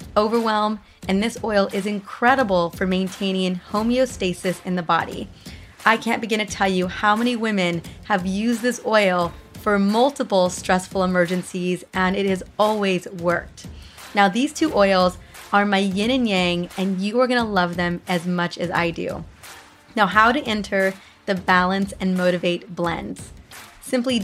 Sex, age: female, 20-39